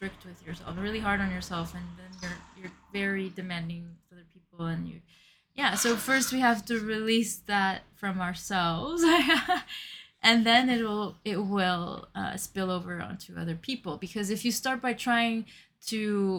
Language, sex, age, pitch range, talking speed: English, female, 20-39, 180-230 Hz, 170 wpm